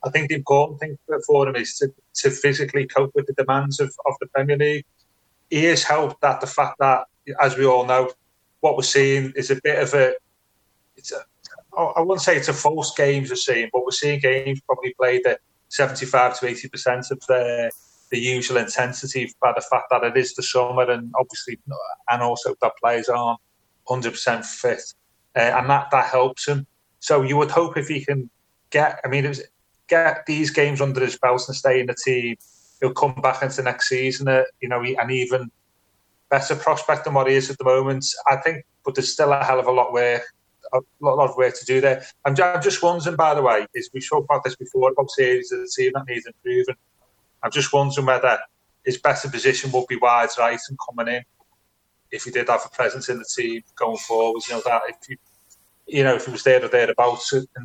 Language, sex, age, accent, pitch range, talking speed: English, male, 30-49, British, 125-150 Hz, 215 wpm